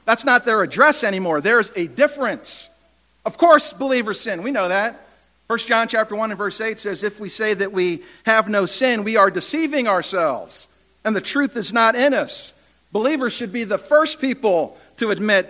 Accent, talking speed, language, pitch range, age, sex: American, 195 wpm, English, 185-240 Hz, 50-69, male